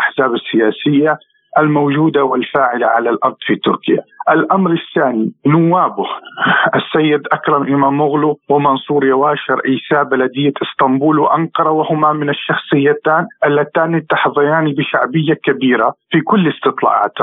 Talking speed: 110 wpm